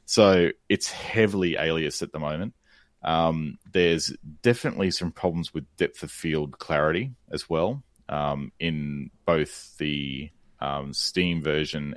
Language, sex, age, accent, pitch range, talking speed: English, male, 30-49, Australian, 75-90 Hz, 130 wpm